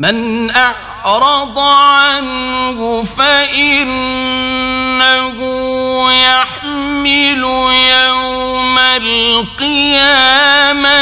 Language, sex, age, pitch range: Persian, male, 40-59, 175-285 Hz